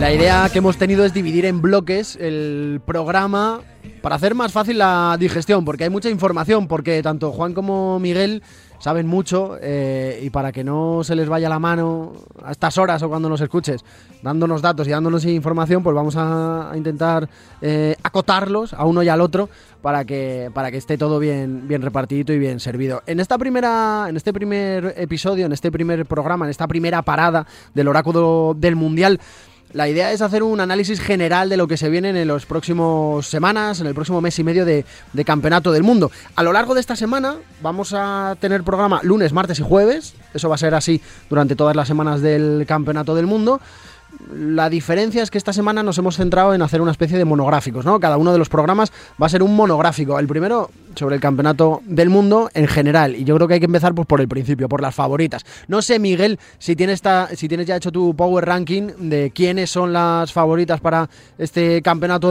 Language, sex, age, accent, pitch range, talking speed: Spanish, male, 20-39, Spanish, 150-190 Hz, 210 wpm